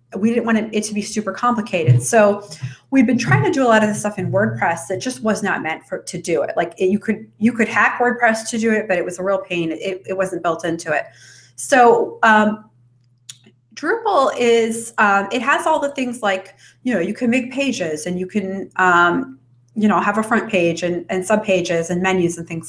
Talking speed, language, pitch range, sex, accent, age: 230 wpm, English, 165-215 Hz, female, American, 30-49